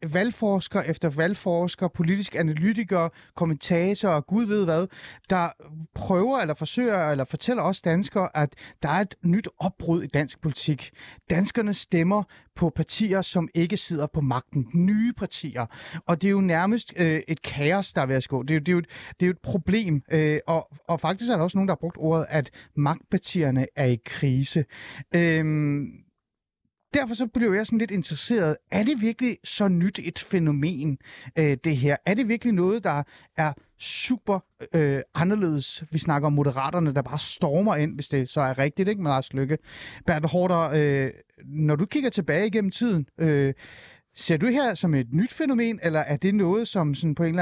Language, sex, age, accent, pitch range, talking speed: Danish, male, 30-49, native, 150-195 Hz, 180 wpm